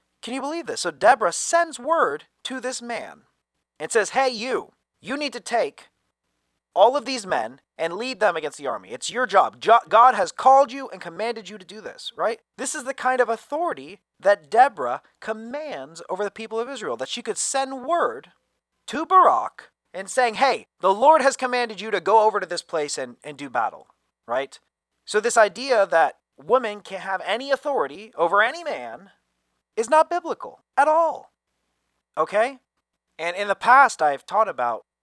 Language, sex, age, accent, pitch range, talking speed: English, male, 30-49, American, 160-260 Hz, 185 wpm